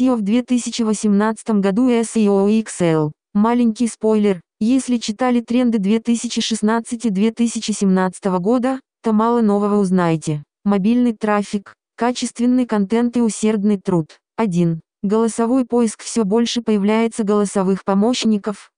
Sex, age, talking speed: female, 20-39, 100 wpm